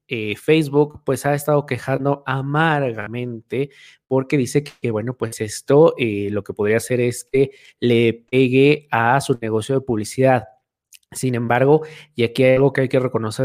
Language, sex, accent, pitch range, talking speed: Spanish, male, Mexican, 120-145 Hz, 165 wpm